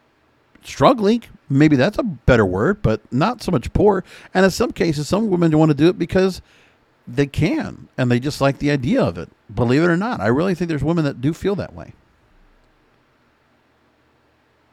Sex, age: male, 50-69